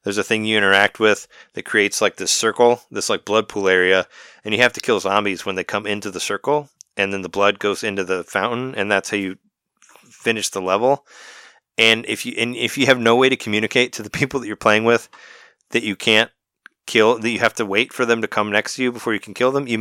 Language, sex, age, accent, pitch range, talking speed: English, male, 30-49, American, 95-120 Hz, 250 wpm